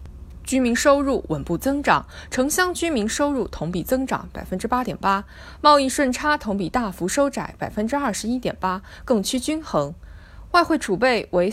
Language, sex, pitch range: Chinese, female, 180-275 Hz